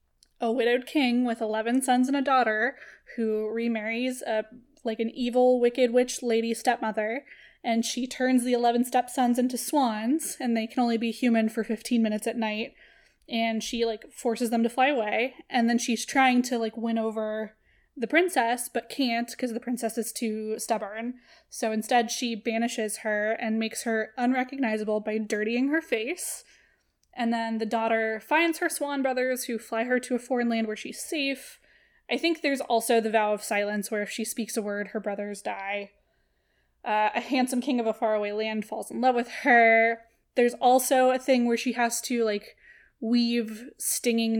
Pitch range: 220-250 Hz